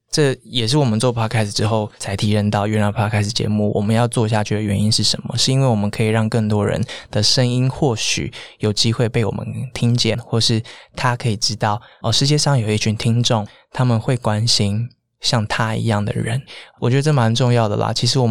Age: 20-39